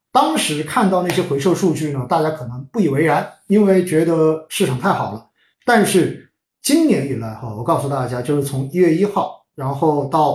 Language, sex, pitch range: Chinese, male, 135-185 Hz